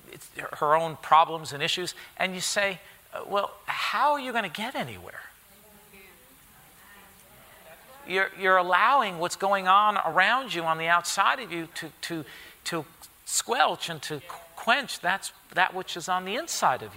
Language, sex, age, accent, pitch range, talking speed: English, male, 50-69, American, 160-200 Hz, 160 wpm